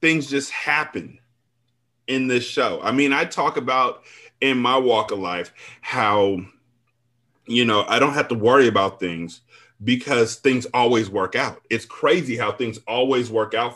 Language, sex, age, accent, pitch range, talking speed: English, male, 30-49, American, 115-135 Hz, 165 wpm